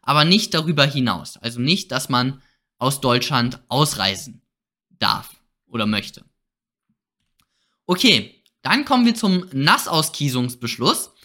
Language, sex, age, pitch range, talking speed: German, male, 20-39, 125-190 Hz, 105 wpm